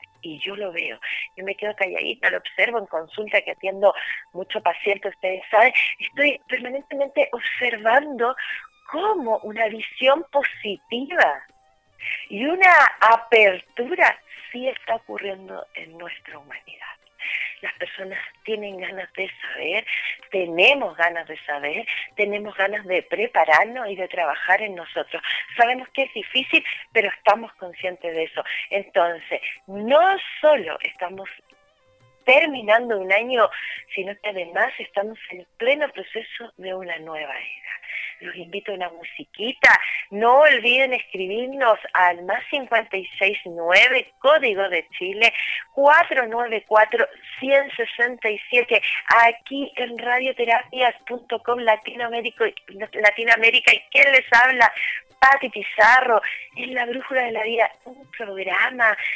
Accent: Spanish